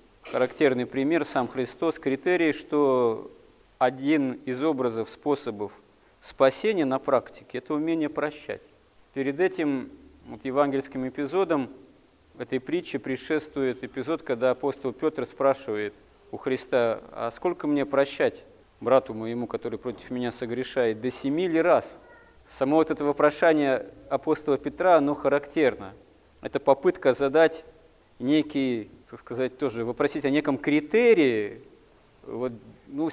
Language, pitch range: Russian, 130-160 Hz